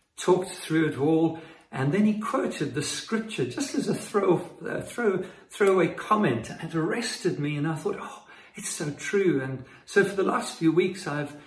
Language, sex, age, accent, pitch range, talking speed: English, male, 50-69, British, 140-180 Hz, 190 wpm